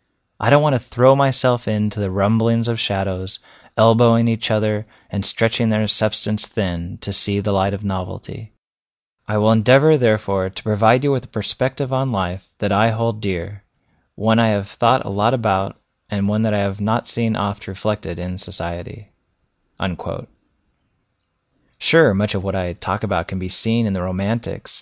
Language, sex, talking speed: English, male, 175 wpm